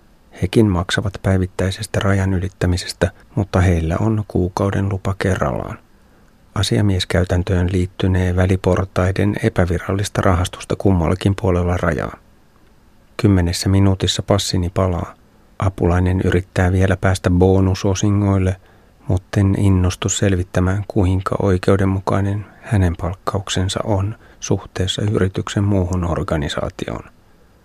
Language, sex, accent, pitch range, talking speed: Finnish, male, native, 90-100 Hz, 90 wpm